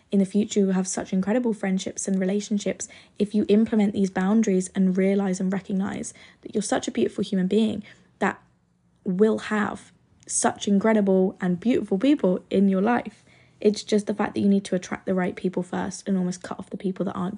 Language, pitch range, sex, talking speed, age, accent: English, 190-210 Hz, female, 205 wpm, 20-39, British